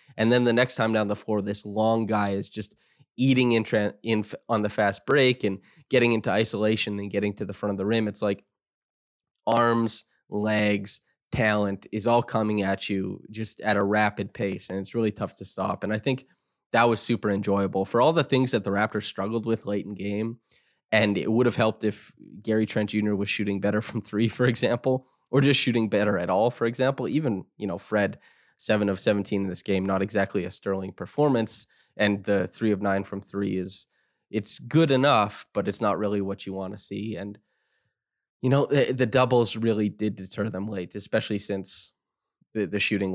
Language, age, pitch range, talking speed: English, 20-39, 100-115 Hz, 200 wpm